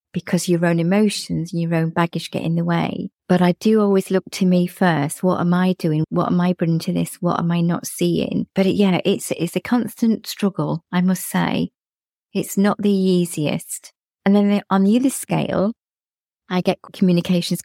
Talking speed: 195 wpm